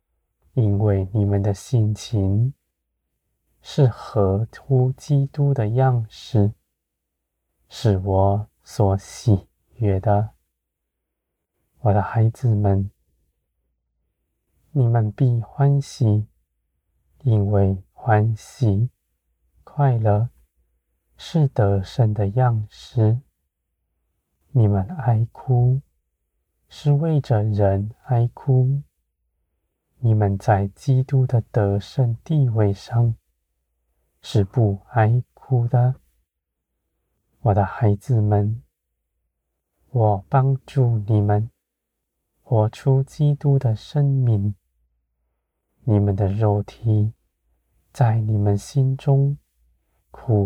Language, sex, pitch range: Chinese, male, 75-120 Hz